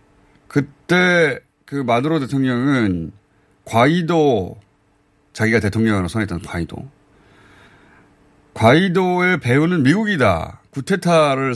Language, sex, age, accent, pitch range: Korean, male, 30-49, native, 110-160 Hz